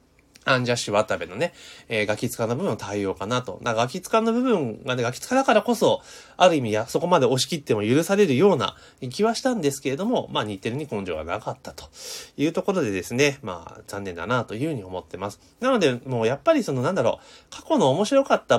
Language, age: Japanese, 30-49